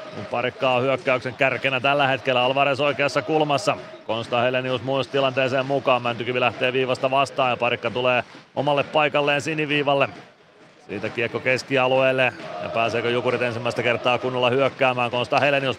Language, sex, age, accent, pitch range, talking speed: Finnish, male, 30-49, native, 125-145 Hz, 140 wpm